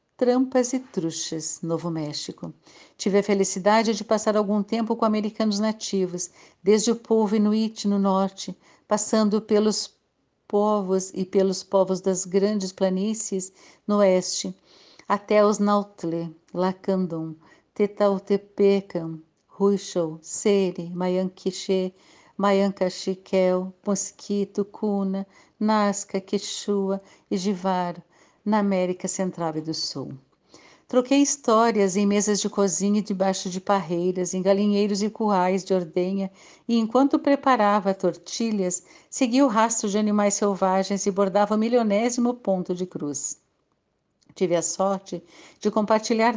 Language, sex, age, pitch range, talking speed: Portuguese, female, 60-79, 185-215 Hz, 120 wpm